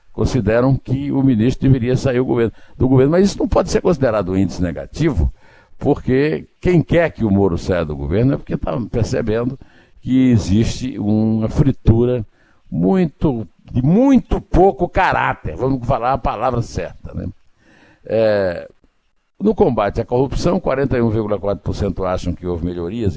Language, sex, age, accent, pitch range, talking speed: Portuguese, male, 60-79, Brazilian, 90-125 Hz, 140 wpm